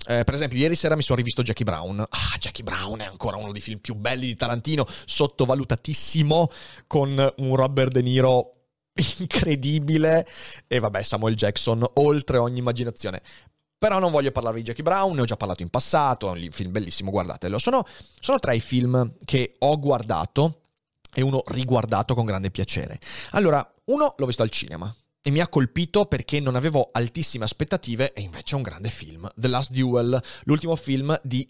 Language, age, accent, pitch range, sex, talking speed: Italian, 30-49, native, 115-145 Hz, male, 180 wpm